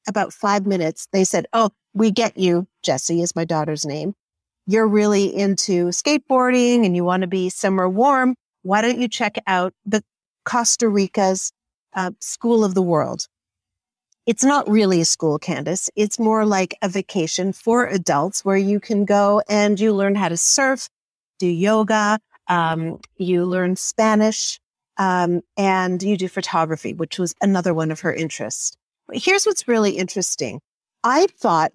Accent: American